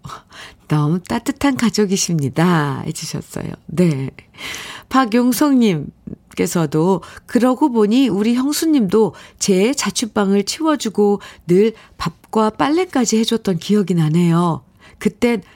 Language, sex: Korean, female